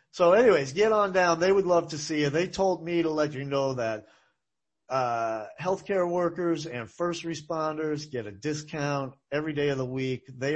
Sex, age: male, 40-59